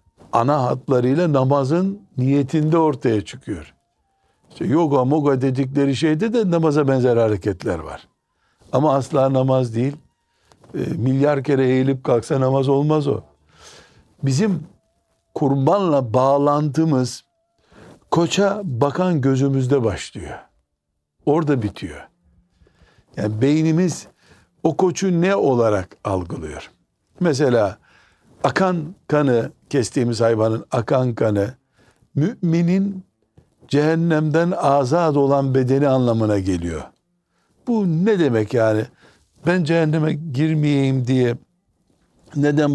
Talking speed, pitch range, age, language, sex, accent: 95 wpm, 115-155 Hz, 60-79, Turkish, male, native